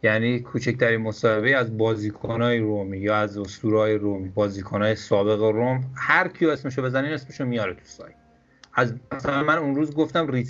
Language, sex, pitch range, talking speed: Persian, male, 115-150 Hz, 160 wpm